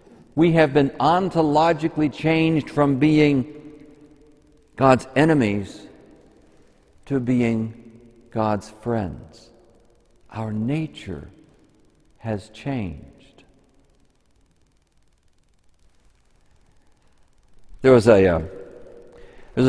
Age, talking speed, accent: 60-79, 65 wpm, American